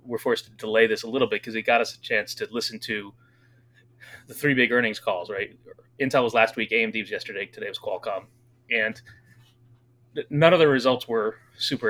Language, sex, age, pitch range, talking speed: English, male, 30-49, 115-125 Hz, 200 wpm